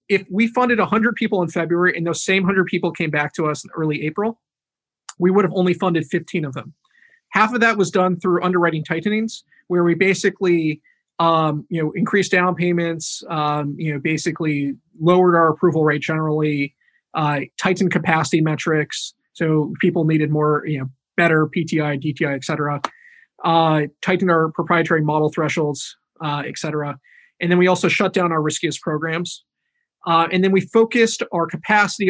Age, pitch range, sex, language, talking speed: 20-39, 155-190 Hz, male, English, 175 wpm